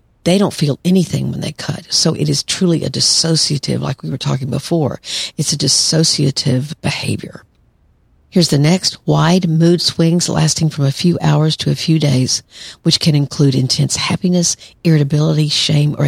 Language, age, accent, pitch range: English, 50-69, American, 140-165 Hz